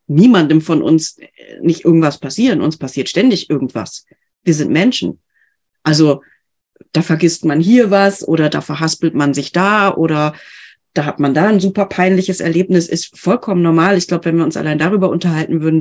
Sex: female